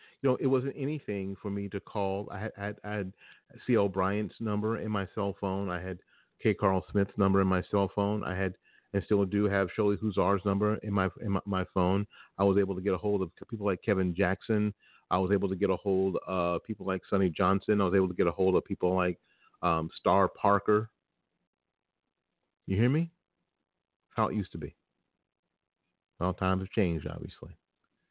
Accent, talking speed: American, 205 wpm